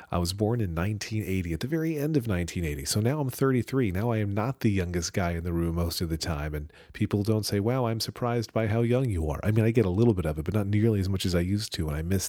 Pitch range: 85-115 Hz